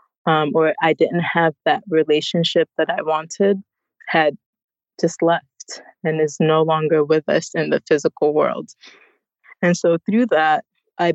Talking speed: 150 wpm